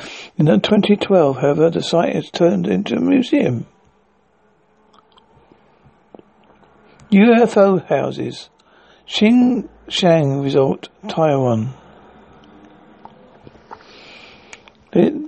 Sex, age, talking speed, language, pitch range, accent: male, 60-79, 65 wpm, English, 160-195 Hz, British